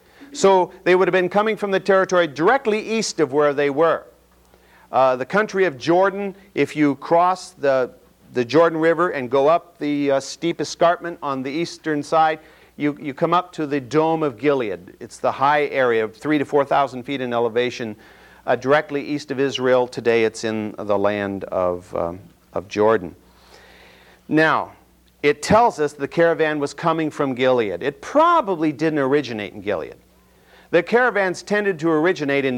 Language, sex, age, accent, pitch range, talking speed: English, male, 50-69, American, 125-165 Hz, 175 wpm